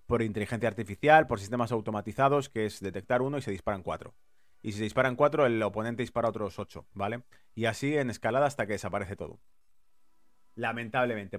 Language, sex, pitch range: Spanish, male, 105-130 Hz